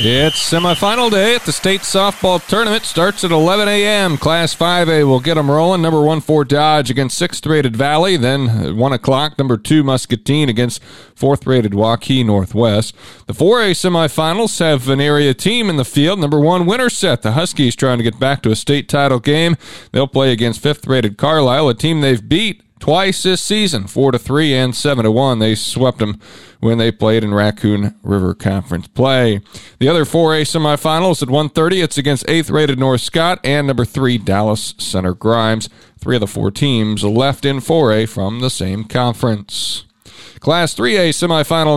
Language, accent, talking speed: English, American, 175 wpm